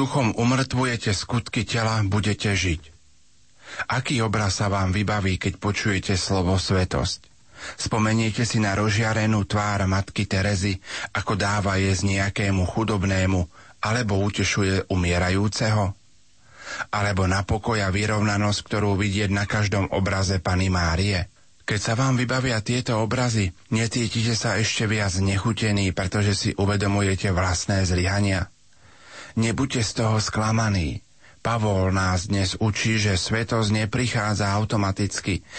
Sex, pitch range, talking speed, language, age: male, 100-115 Hz, 120 wpm, Slovak, 40-59